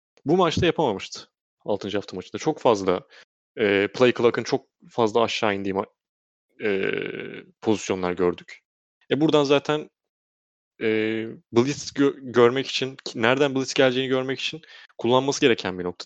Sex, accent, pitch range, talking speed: male, native, 100-140 Hz, 135 wpm